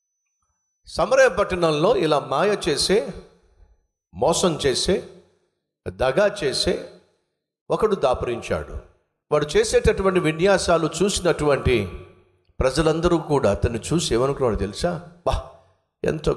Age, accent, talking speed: 50-69, native, 90 wpm